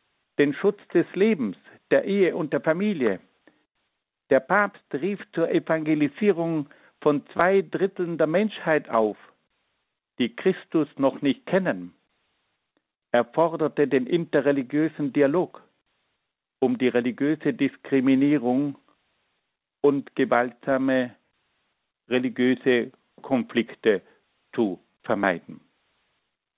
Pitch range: 125-160 Hz